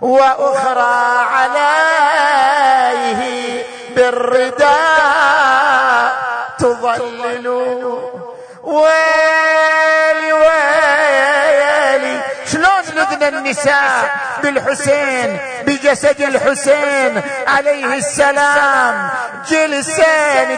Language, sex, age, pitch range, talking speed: Arabic, male, 50-69, 265-315 Hz, 45 wpm